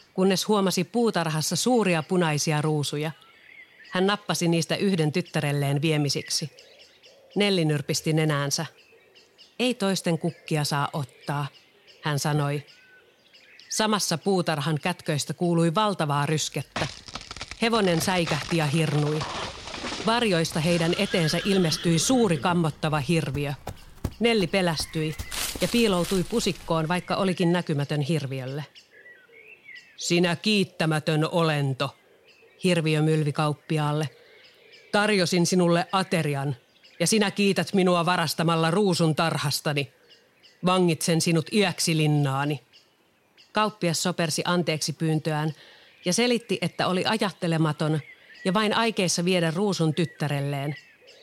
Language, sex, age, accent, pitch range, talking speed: Finnish, female, 40-59, native, 155-195 Hz, 95 wpm